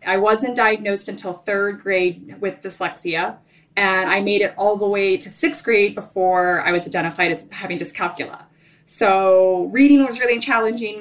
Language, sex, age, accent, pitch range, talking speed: English, female, 20-39, American, 175-230 Hz, 165 wpm